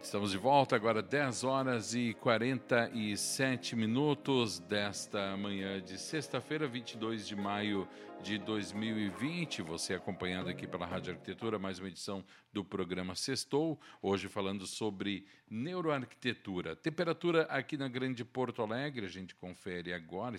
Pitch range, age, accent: 95-125 Hz, 50-69, Brazilian